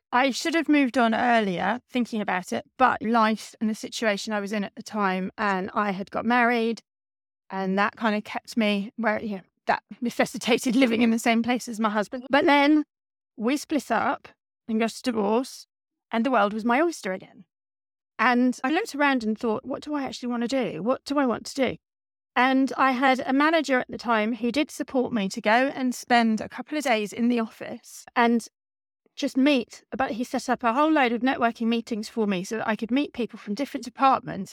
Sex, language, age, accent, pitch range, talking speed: female, English, 30-49, British, 215-260 Hz, 220 wpm